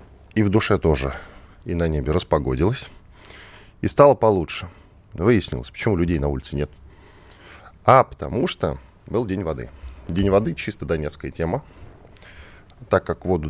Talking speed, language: 140 wpm, Russian